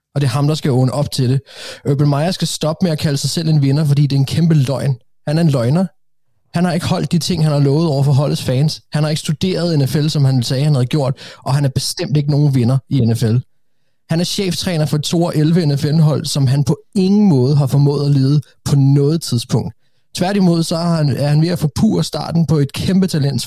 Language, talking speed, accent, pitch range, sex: Danish, 245 wpm, native, 140-175 Hz, male